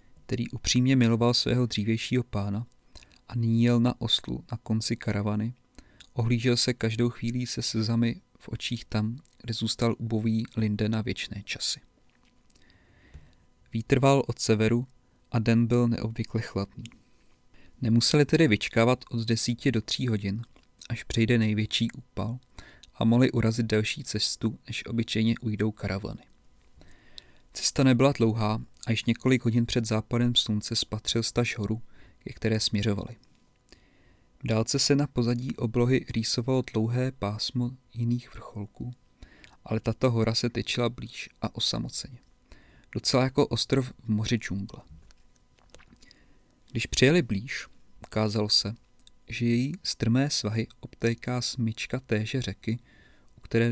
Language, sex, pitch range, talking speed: Czech, male, 110-125 Hz, 125 wpm